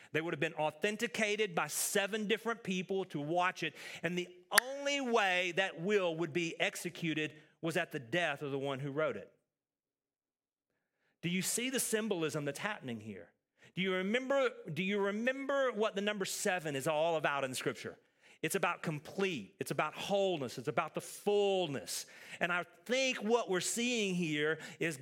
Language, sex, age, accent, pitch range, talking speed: English, male, 40-59, American, 165-220 Hz, 170 wpm